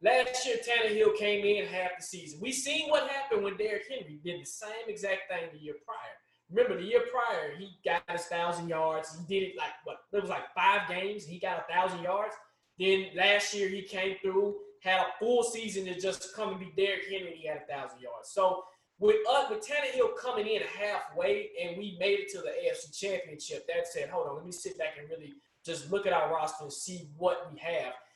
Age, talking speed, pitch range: 20-39, 225 wpm, 175-285 Hz